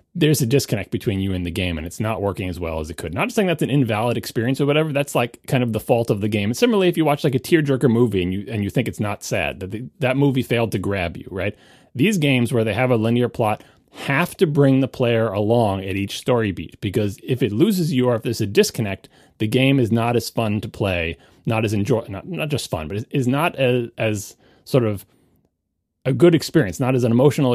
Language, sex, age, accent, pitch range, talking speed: English, male, 30-49, American, 100-135 Hz, 260 wpm